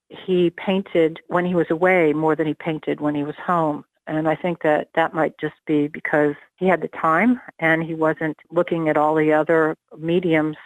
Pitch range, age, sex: 150-170 Hz, 60-79, female